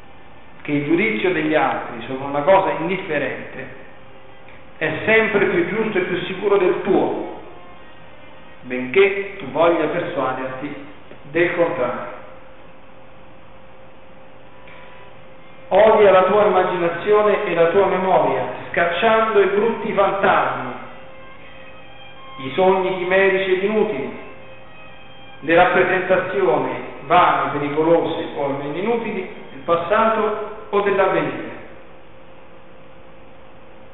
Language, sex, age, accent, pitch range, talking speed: Italian, male, 50-69, native, 135-195 Hz, 90 wpm